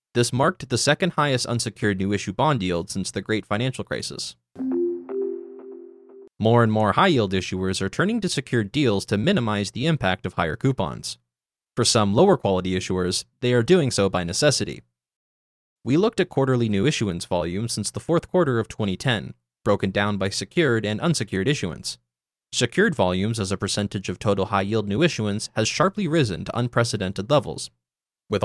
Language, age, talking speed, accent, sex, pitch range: English, 20-39, 165 wpm, American, male, 95-140 Hz